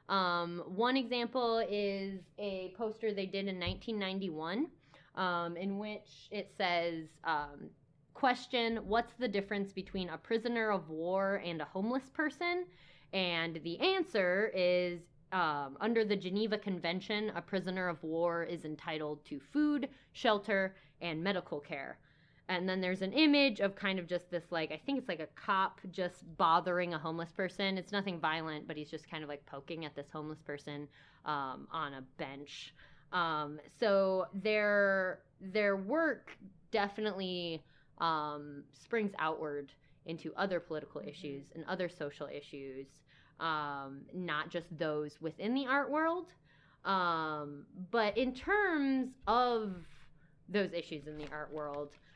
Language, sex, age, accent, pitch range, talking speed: English, female, 10-29, American, 155-210 Hz, 145 wpm